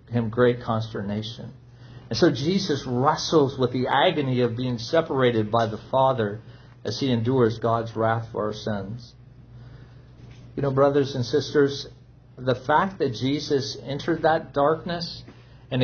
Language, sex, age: English, male, 50-69